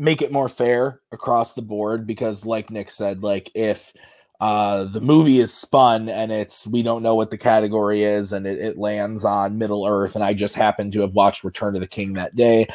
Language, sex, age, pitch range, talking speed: English, male, 30-49, 105-140 Hz, 220 wpm